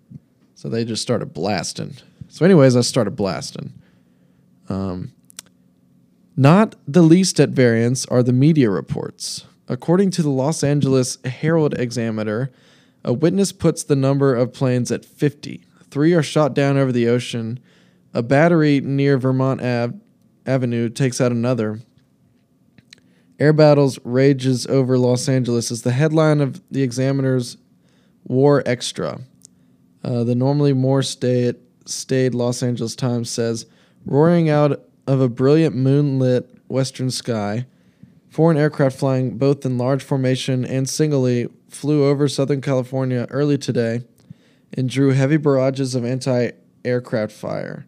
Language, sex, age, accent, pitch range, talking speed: English, male, 20-39, American, 120-145 Hz, 130 wpm